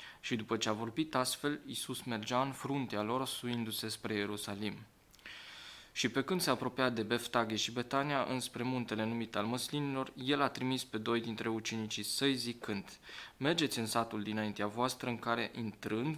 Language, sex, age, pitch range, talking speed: Romanian, male, 20-39, 110-135 Hz, 165 wpm